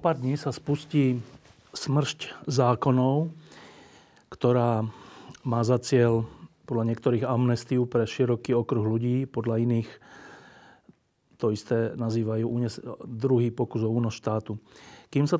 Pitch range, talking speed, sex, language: 115-135 Hz, 110 wpm, male, Slovak